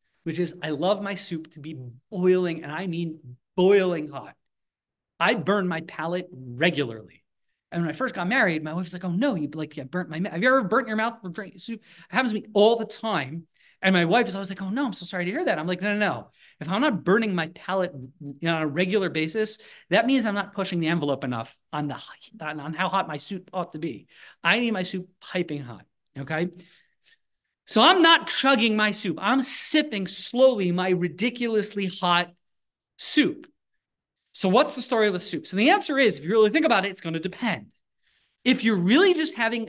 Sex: male